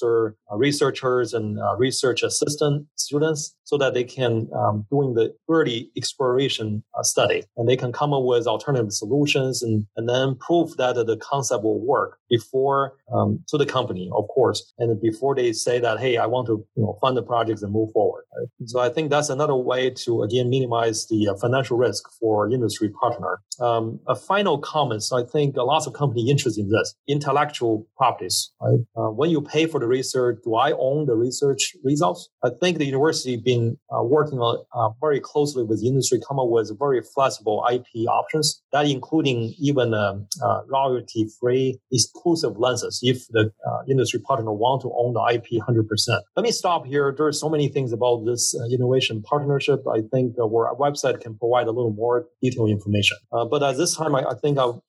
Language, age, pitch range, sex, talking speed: English, 30-49, 115-145 Hz, male, 200 wpm